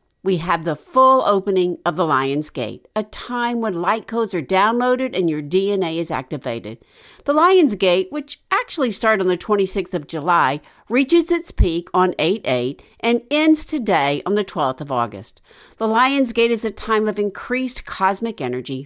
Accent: American